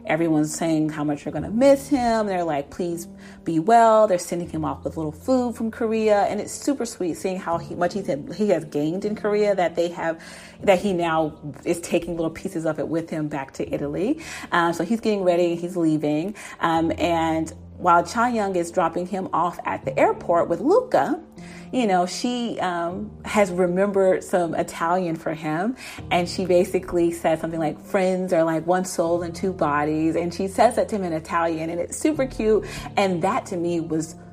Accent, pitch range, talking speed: American, 160-200 Hz, 205 wpm